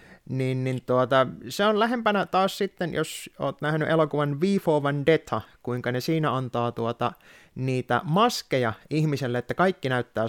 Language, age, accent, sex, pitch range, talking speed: Finnish, 30-49, native, male, 125-170 Hz, 145 wpm